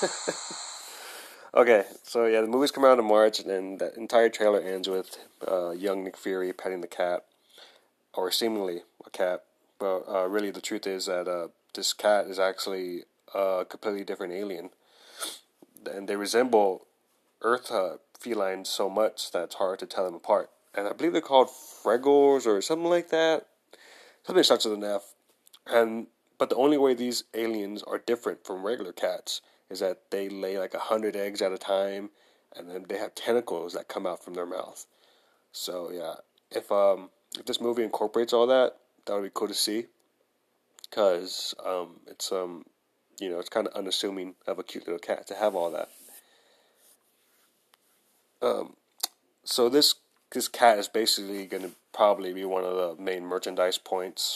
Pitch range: 95-120 Hz